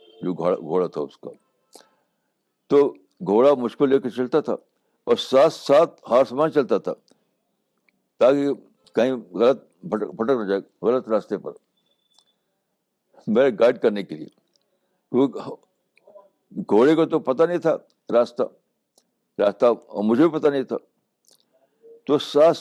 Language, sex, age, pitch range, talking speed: Urdu, male, 60-79, 120-175 Hz, 120 wpm